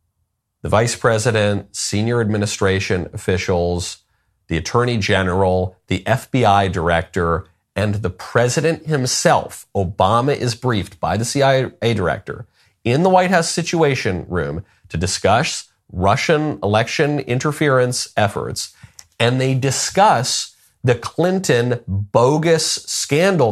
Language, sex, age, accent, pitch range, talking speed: English, male, 40-59, American, 95-135 Hz, 105 wpm